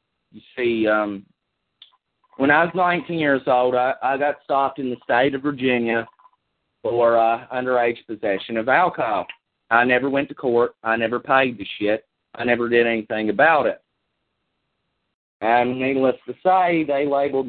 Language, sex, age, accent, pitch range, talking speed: English, male, 40-59, American, 110-140 Hz, 160 wpm